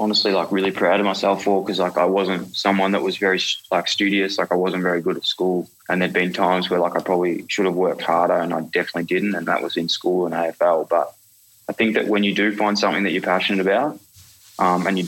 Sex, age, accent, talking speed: male, 20-39, Australian, 250 wpm